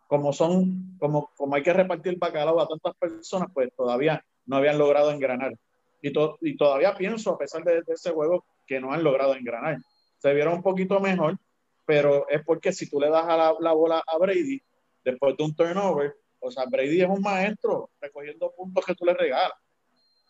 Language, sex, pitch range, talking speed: Spanish, male, 145-180 Hz, 200 wpm